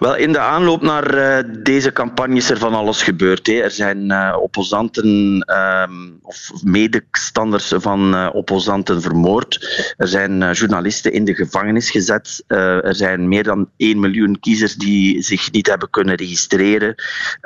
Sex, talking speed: male, 140 wpm